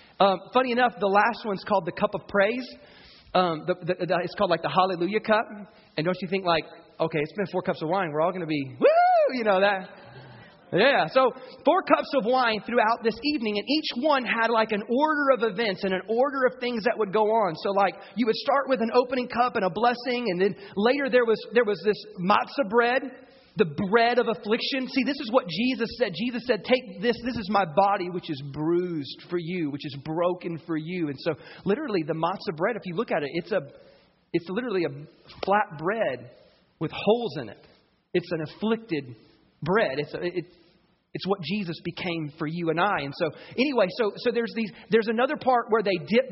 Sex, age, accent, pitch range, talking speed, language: male, 30-49, American, 175-235 Hz, 220 wpm, English